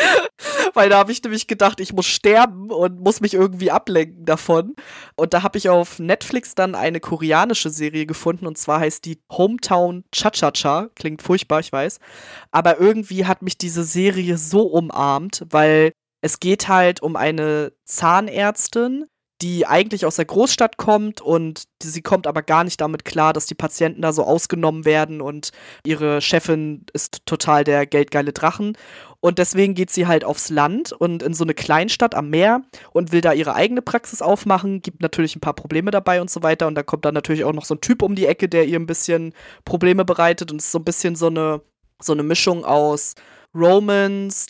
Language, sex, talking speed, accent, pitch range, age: German, female, 190 wpm, German, 160-195 Hz, 20-39